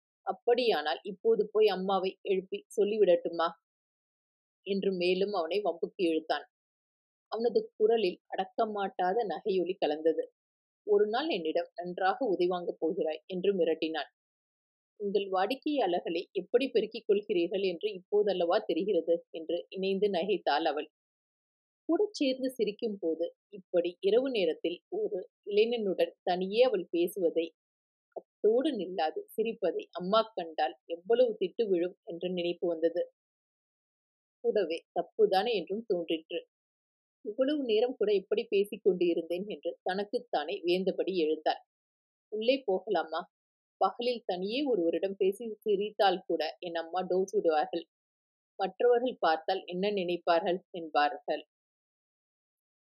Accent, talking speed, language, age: native, 95 wpm, Tamil, 30-49